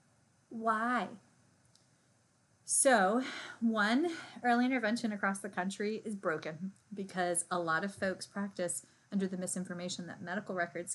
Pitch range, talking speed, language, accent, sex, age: 175-205 Hz, 120 wpm, English, American, female, 30-49